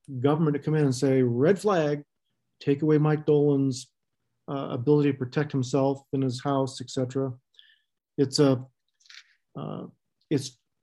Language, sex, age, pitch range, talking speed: English, male, 50-69, 135-155 Hz, 140 wpm